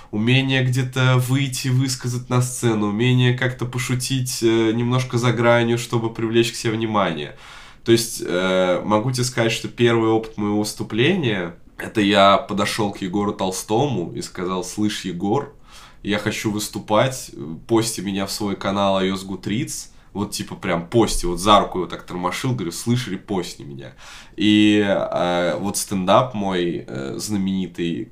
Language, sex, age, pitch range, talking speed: Russian, male, 20-39, 100-130 Hz, 150 wpm